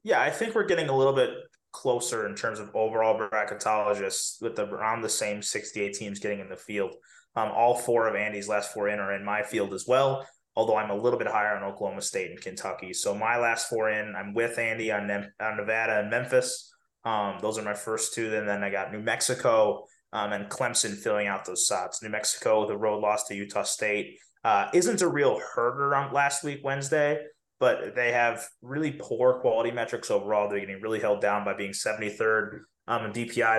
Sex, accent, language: male, American, English